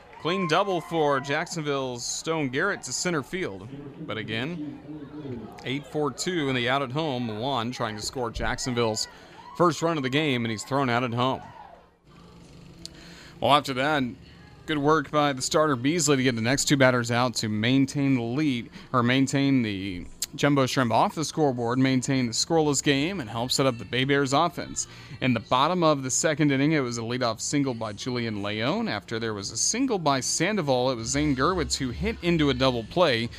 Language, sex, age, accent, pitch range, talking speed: English, male, 30-49, American, 115-150 Hz, 190 wpm